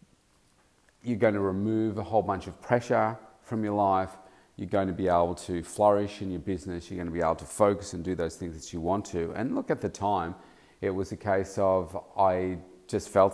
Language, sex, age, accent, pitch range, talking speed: English, male, 40-59, Australian, 85-100 Hz, 225 wpm